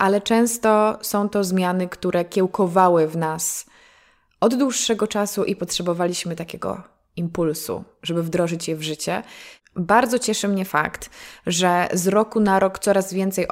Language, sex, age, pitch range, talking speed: Polish, female, 20-39, 165-195 Hz, 140 wpm